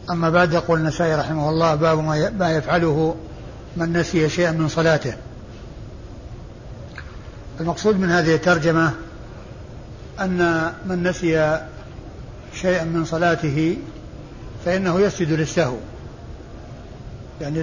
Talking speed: 95 wpm